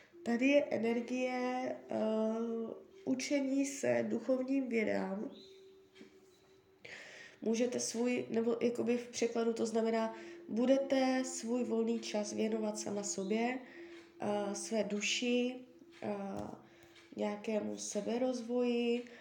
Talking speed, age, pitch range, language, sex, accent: 90 wpm, 20-39, 210-245 Hz, Czech, female, native